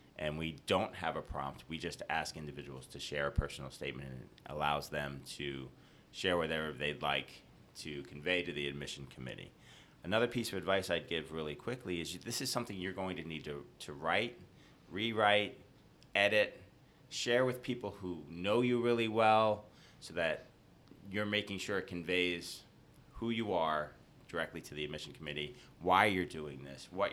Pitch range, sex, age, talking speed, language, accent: 75-105 Hz, male, 30-49, 175 wpm, English, American